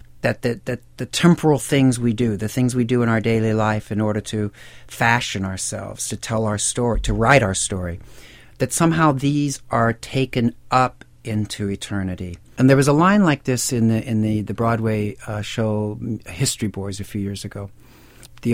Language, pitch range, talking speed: English, 105-120 Hz, 190 wpm